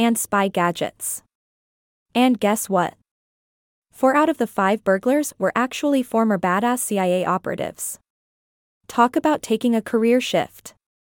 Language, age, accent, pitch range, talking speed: English, 20-39, American, 195-245 Hz, 130 wpm